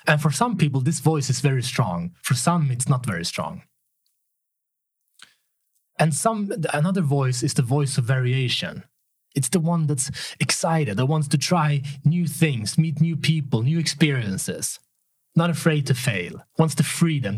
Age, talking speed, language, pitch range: 30-49, 160 wpm, Swedish, 130-160 Hz